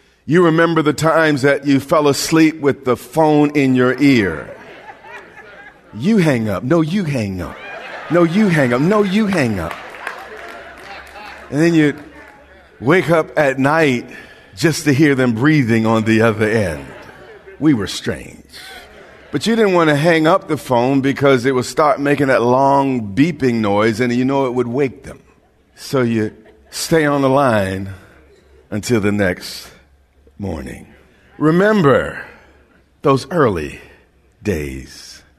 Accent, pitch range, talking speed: American, 115-155 Hz, 150 wpm